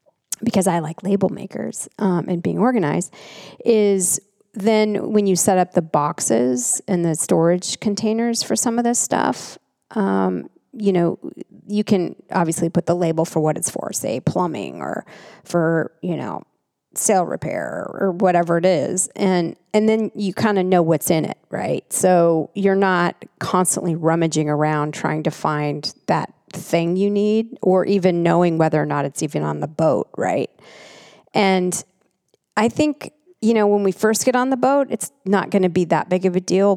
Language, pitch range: English, 160-200 Hz